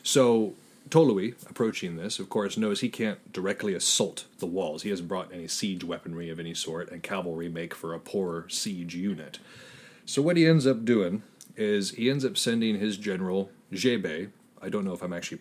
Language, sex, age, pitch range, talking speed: English, male, 30-49, 95-130 Hz, 195 wpm